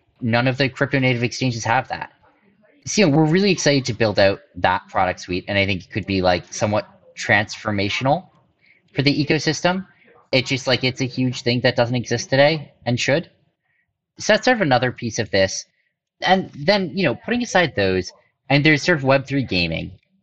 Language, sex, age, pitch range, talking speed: English, male, 30-49, 100-160 Hz, 195 wpm